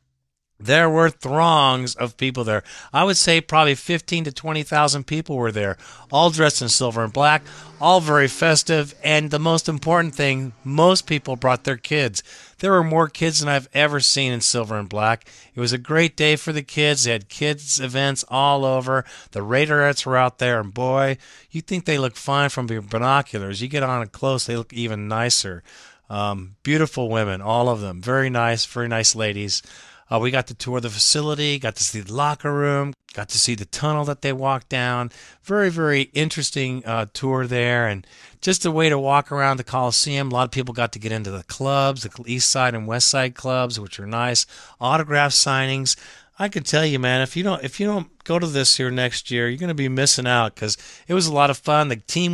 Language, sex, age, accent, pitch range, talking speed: English, male, 50-69, American, 120-150 Hz, 215 wpm